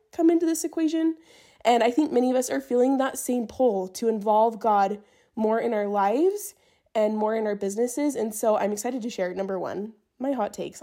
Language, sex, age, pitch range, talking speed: English, female, 20-39, 215-295 Hz, 210 wpm